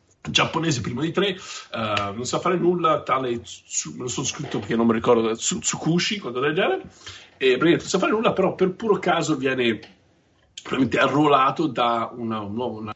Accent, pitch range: native, 115-175 Hz